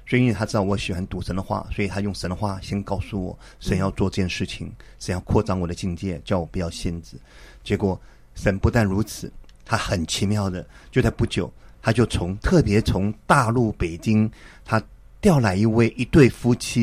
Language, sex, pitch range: Chinese, male, 95-110 Hz